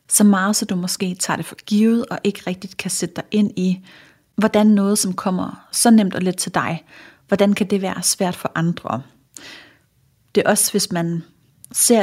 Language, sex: Danish, female